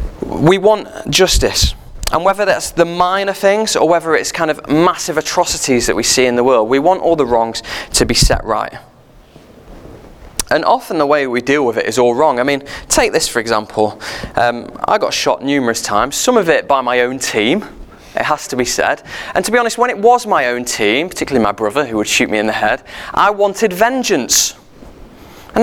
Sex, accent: male, British